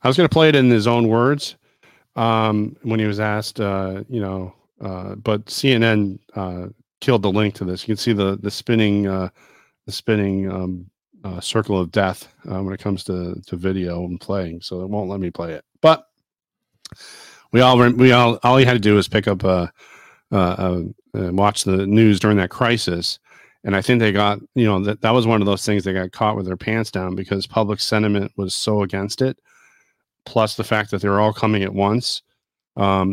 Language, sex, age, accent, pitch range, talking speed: English, male, 40-59, American, 95-110 Hz, 215 wpm